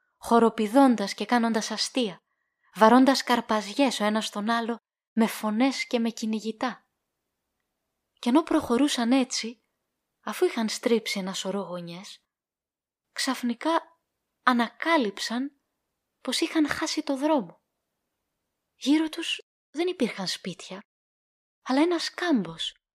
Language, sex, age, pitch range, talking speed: Greek, female, 20-39, 220-290 Hz, 105 wpm